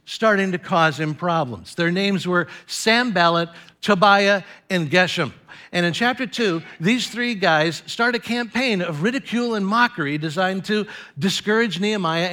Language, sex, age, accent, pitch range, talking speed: English, male, 60-79, American, 170-240 Hz, 150 wpm